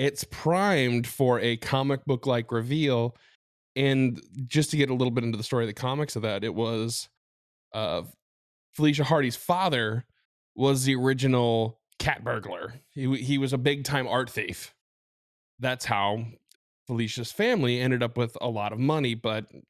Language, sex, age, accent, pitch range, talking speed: English, male, 10-29, American, 110-135 Hz, 165 wpm